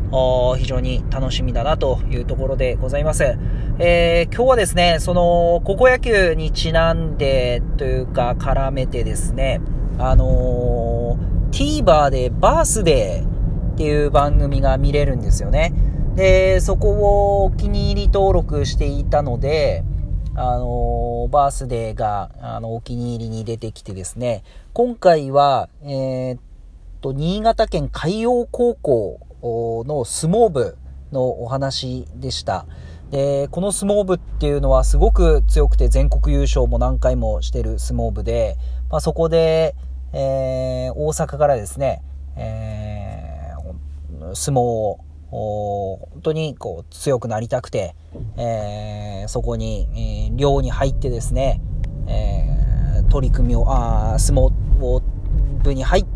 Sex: male